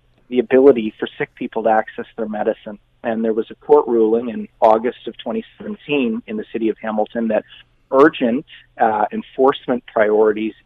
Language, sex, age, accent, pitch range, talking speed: English, male, 30-49, American, 110-145 Hz, 165 wpm